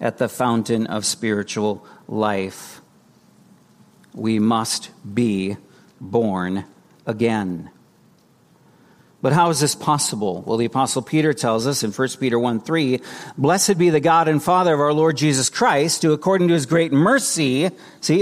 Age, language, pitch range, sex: 50-69, English, 130-195 Hz, male